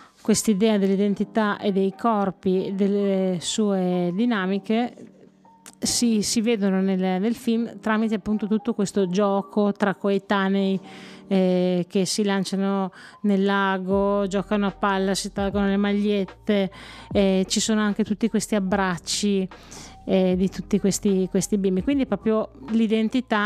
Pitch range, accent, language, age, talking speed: 185-215 Hz, native, Italian, 30-49, 130 wpm